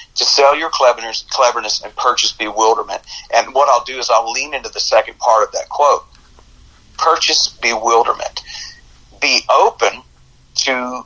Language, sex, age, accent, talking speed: English, male, 40-59, American, 145 wpm